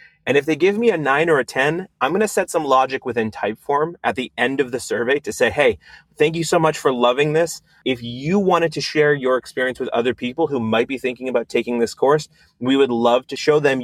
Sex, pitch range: male, 115-165 Hz